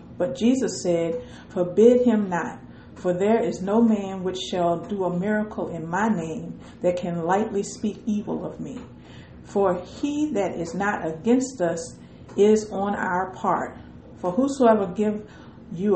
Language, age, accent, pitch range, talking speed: English, 50-69, American, 175-215 Hz, 155 wpm